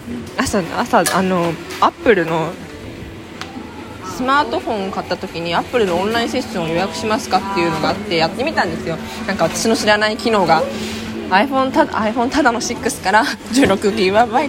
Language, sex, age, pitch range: Japanese, female, 20-39, 185-255 Hz